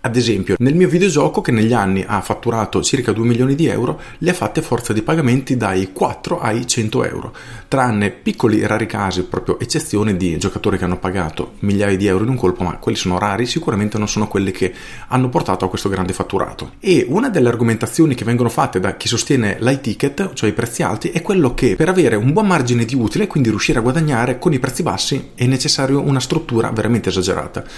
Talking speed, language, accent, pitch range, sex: 215 wpm, Italian, native, 105-135 Hz, male